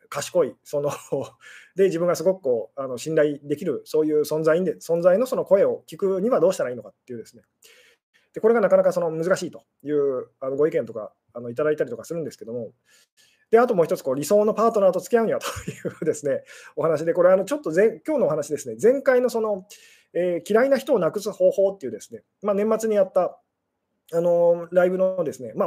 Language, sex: Japanese, male